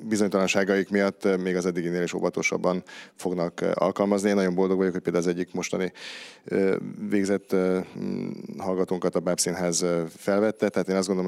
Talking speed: 150 wpm